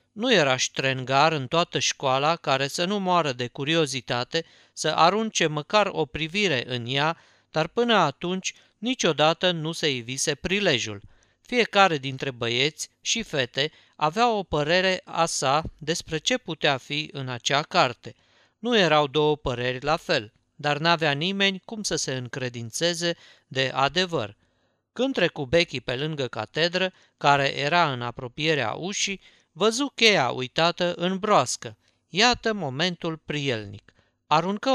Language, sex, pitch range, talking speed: Romanian, male, 130-180 Hz, 135 wpm